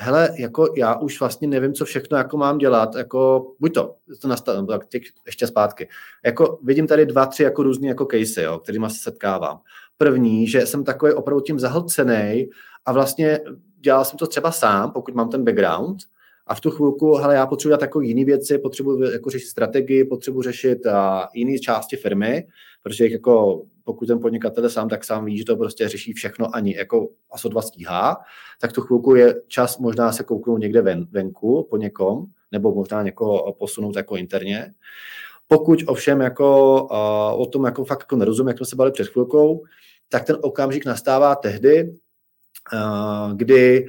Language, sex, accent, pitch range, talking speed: Czech, male, native, 120-145 Hz, 175 wpm